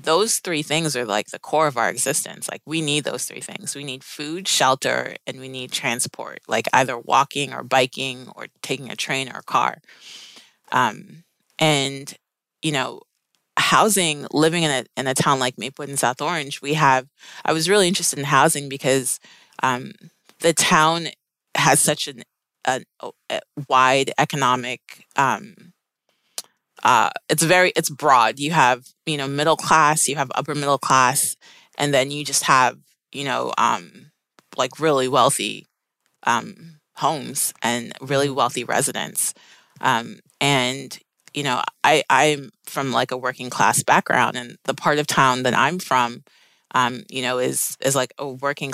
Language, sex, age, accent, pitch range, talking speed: English, female, 30-49, American, 130-150 Hz, 160 wpm